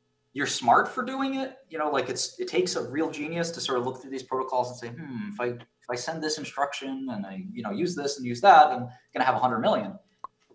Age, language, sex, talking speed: 20-39, English, male, 260 wpm